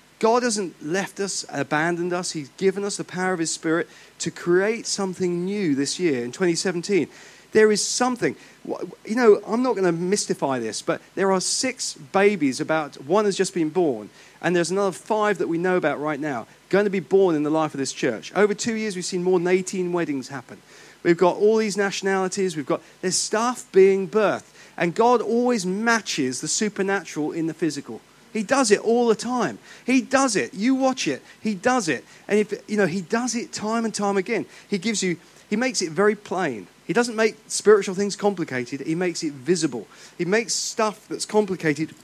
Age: 40-59